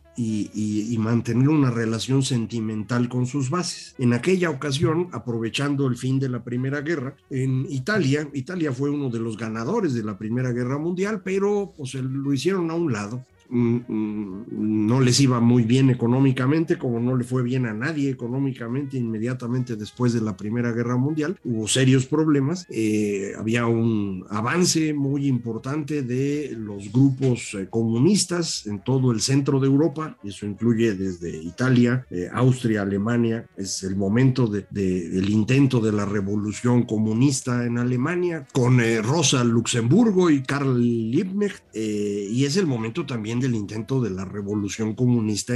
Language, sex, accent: Spanish, male, Mexican